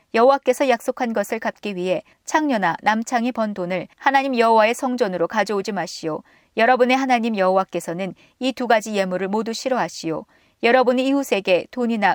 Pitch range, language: 190-255 Hz, Korean